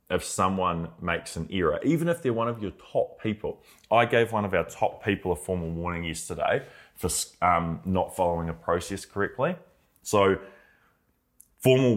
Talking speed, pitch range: 165 wpm, 85-105 Hz